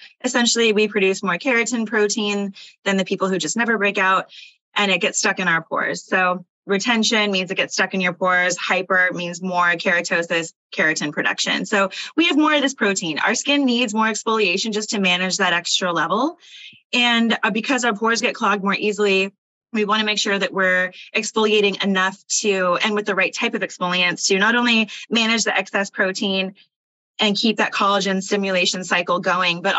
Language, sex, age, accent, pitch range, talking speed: English, female, 20-39, American, 185-230 Hz, 190 wpm